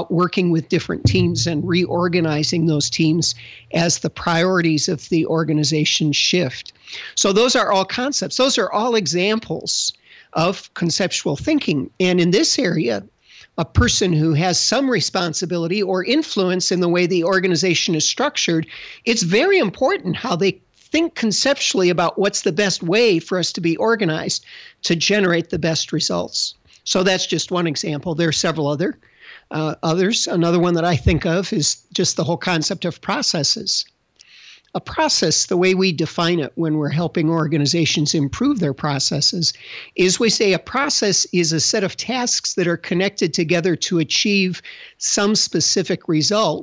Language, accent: English, American